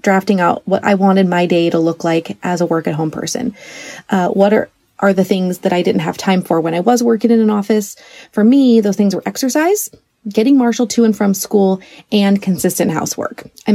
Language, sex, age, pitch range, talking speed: English, female, 30-49, 170-215 Hz, 215 wpm